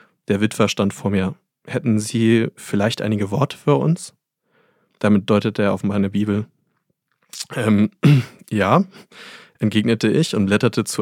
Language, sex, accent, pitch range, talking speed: German, male, German, 105-135 Hz, 135 wpm